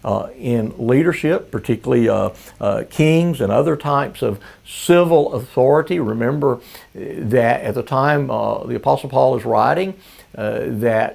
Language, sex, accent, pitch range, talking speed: English, male, American, 120-155 Hz, 140 wpm